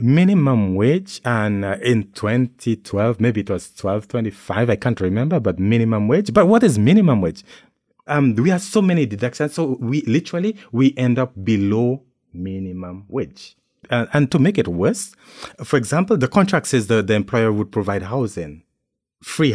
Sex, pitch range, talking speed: male, 100-145 Hz, 170 wpm